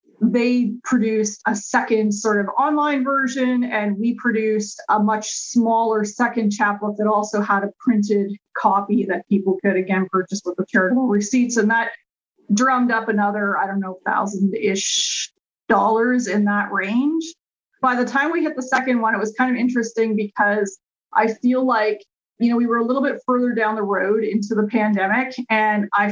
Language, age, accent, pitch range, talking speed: English, 30-49, American, 210-245 Hz, 175 wpm